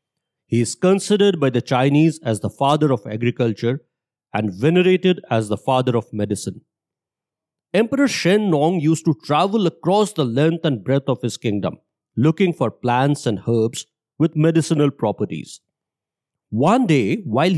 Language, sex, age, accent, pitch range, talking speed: English, male, 50-69, Indian, 125-170 Hz, 145 wpm